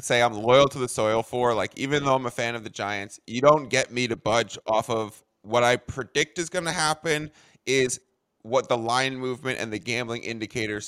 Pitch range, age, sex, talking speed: 125-160 Hz, 20-39, male, 220 wpm